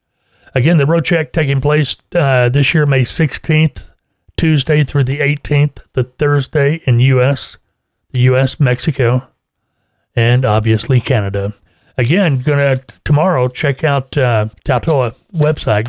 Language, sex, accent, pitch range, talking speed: English, male, American, 115-140 Hz, 125 wpm